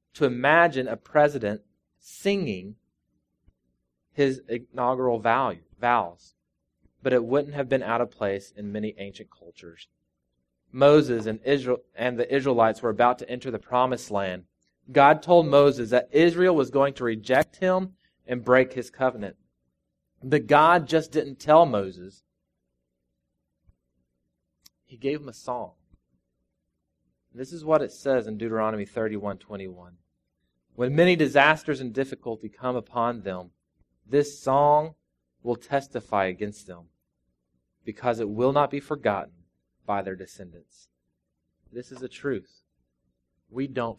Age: 20-39